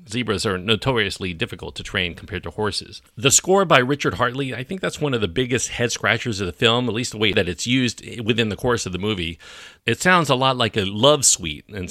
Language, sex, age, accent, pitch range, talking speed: English, male, 40-59, American, 95-130 Hz, 240 wpm